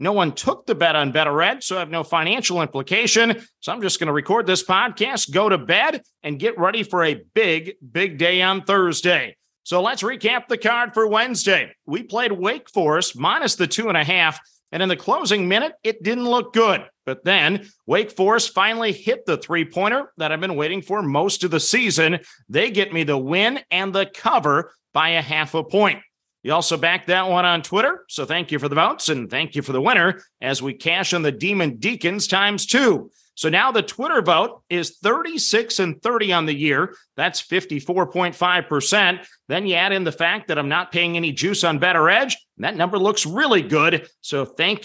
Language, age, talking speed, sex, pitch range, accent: English, 40-59, 210 wpm, male, 160-210 Hz, American